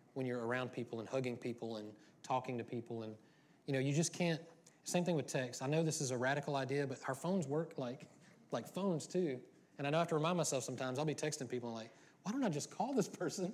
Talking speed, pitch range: 255 wpm, 120-155 Hz